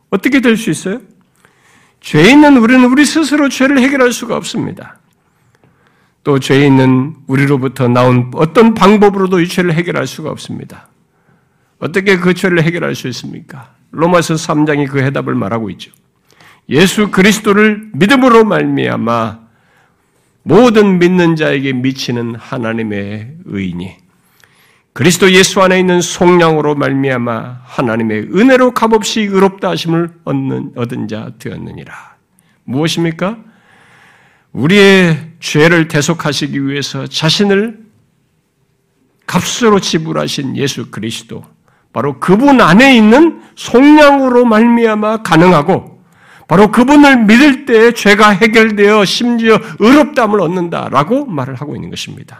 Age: 50-69